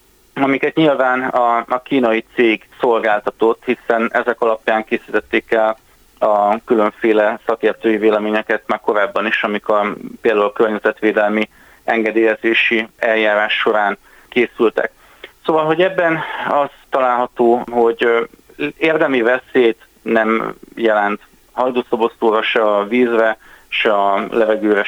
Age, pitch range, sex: 30-49, 110-125 Hz, male